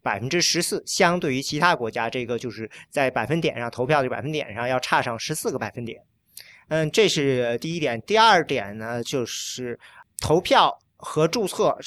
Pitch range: 140-200 Hz